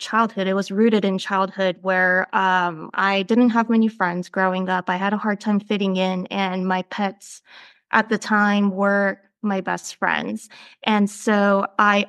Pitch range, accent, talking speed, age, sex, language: 190-215 Hz, American, 175 wpm, 20-39, female, English